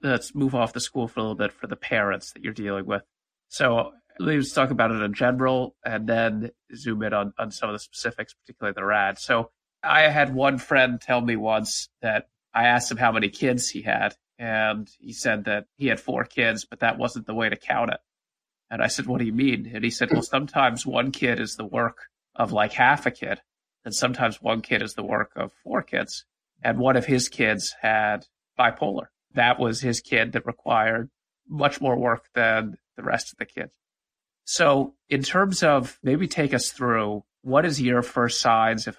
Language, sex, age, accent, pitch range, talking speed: English, male, 30-49, American, 110-135 Hz, 210 wpm